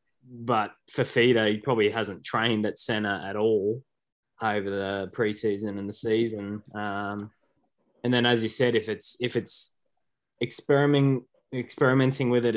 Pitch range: 100-115 Hz